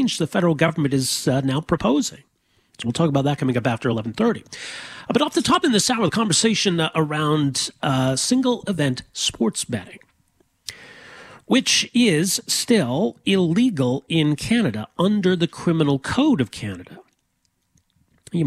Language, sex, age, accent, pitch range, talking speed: English, male, 40-59, American, 120-170 Hz, 145 wpm